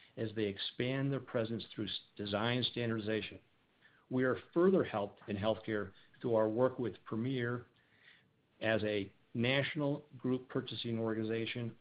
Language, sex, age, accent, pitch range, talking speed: English, male, 50-69, American, 110-130 Hz, 125 wpm